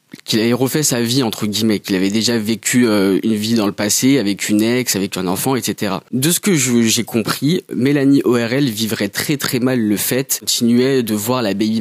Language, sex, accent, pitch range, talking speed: French, male, French, 110-135 Hz, 220 wpm